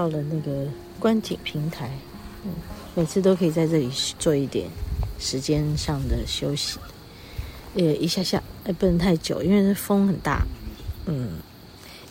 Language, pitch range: Chinese, 130-190 Hz